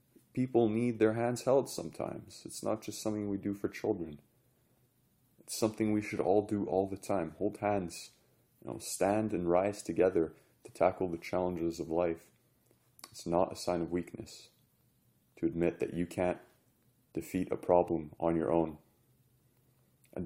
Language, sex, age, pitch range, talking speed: English, male, 30-49, 85-115 Hz, 155 wpm